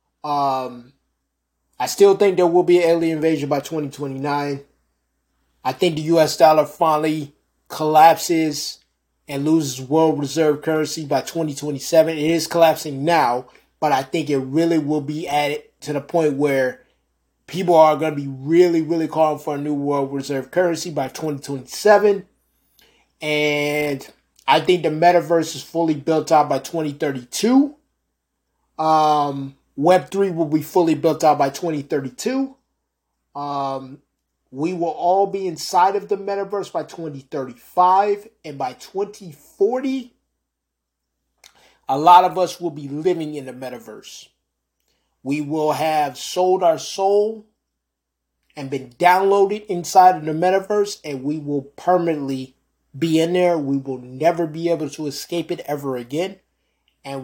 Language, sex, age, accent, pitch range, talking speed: English, male, 20-39, American, 140-175 Hz, 140 wpm